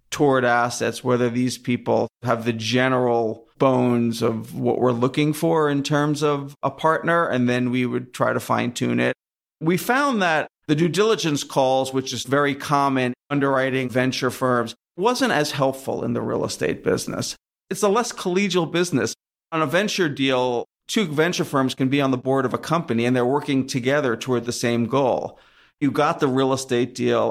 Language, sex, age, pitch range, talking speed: English, male, 40-59, 125-150 Hz, 185 wpm